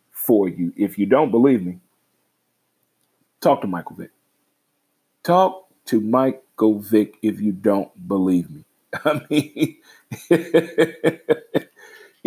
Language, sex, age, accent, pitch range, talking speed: English, male, 40-59, American, 105-135 Hz, 110 wpm